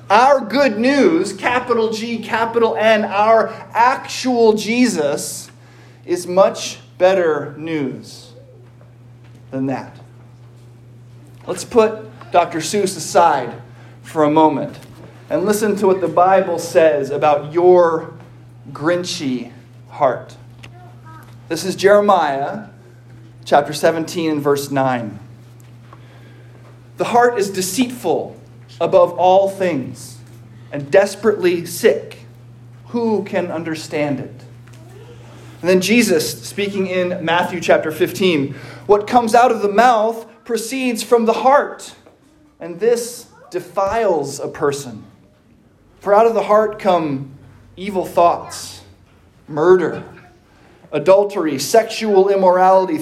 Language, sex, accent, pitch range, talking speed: English, male, American, 120-200 Hz, 105 wpm